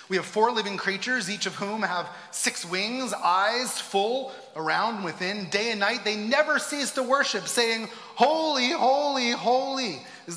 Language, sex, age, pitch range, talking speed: English, male, 30-49, 180-240 Hz, 160 wpm